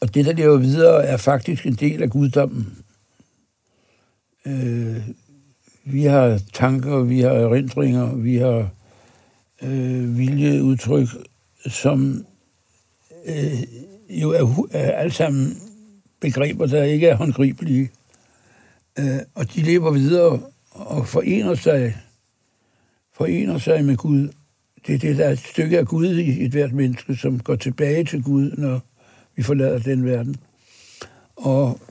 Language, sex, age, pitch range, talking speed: Danish, male, 60-79, 120-140 Hz, 130 wpm